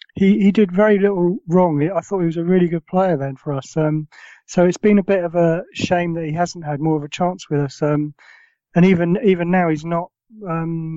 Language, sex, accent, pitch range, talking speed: English, male, British, 150-175 Hz, 240 wpm